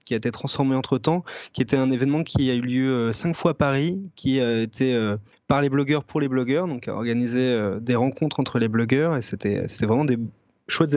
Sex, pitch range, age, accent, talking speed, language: male, 115-140 Hz, 20-39, French, 225 wpm, French